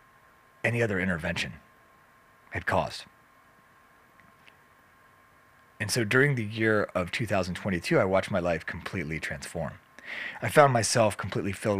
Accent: American